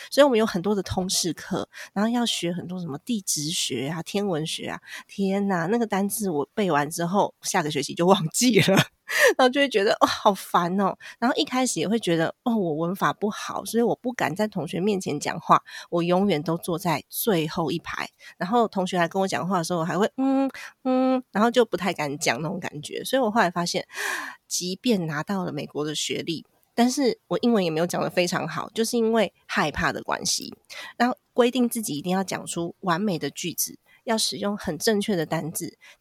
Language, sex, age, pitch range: Chinese, female, 20-39, 170-225 Hz